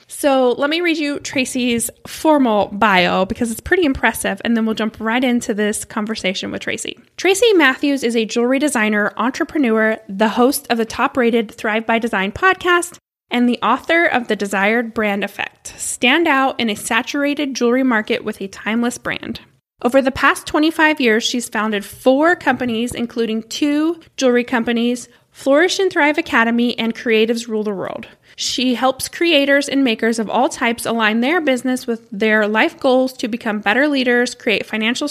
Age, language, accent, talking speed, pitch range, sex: 20-39, English, American, 170 wpm, 225-275 Hz, female